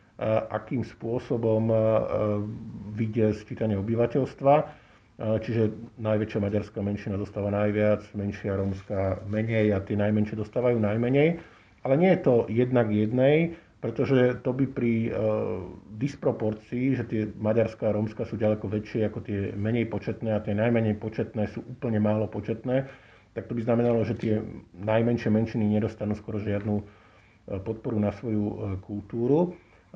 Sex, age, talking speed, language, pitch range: male, 50-69, 130 wpm, Slovak, 105-120 Hz